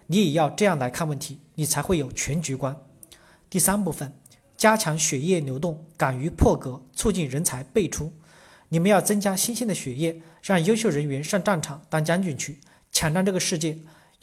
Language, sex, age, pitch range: Chinese, male, 40-59, 150-190 Hz